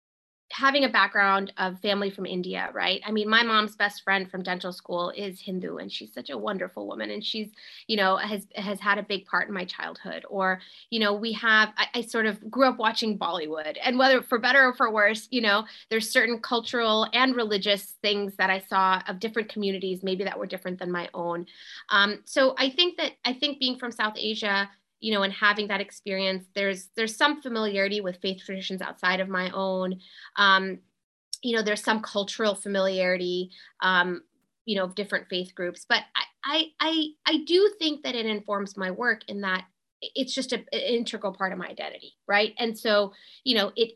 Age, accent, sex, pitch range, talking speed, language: 20-39, American, female, 190-230 Hz, 205 wpm, English